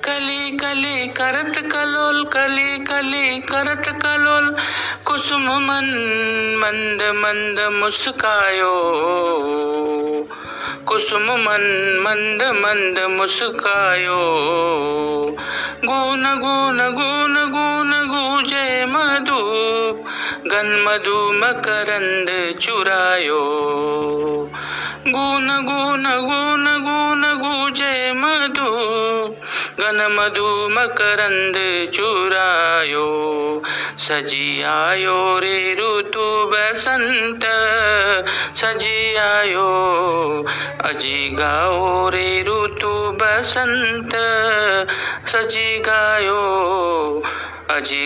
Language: Marathi